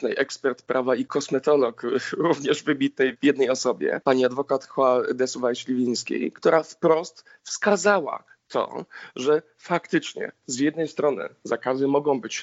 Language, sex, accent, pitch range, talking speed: Polish, male, native, 135-165 Hz, 120 wpm